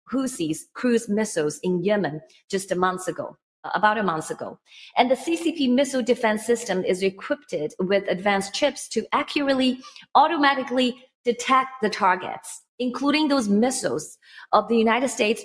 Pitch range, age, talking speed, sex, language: 195-260 Hz, 30-49, 145 wpm, female, English